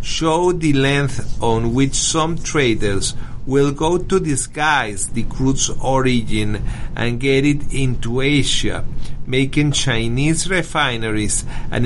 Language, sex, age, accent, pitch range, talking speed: English, male, 50-69, Italian, 120-140 Hz, 115 wpm